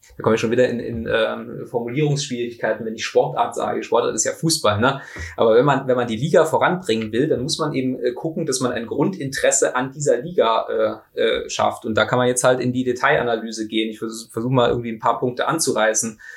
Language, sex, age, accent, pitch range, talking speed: German, male, 20-39, German, 115-150 Hz, 225 wpm